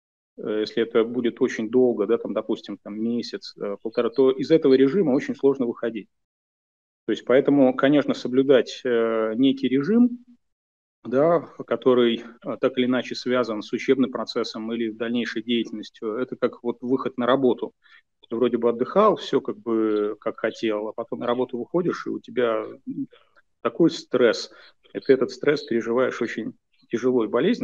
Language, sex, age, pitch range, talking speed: Russian, male, 30-49, 115-135 Hz, 150 wpm